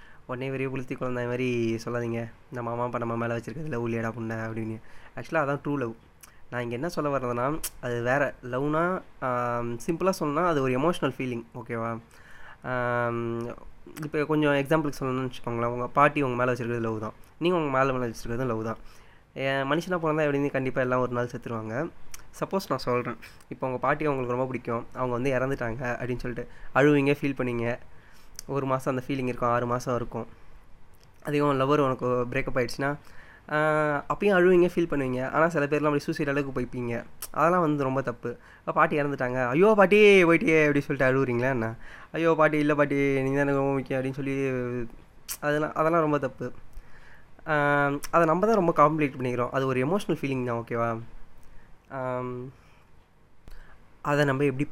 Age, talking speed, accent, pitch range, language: 20-39, 155 wpm, native, 120-145 Hz, Tamil